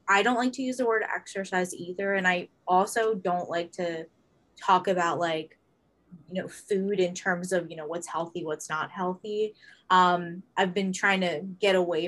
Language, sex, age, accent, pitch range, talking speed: English, female, 20-39, American, 175-200 Hz, 190 wpm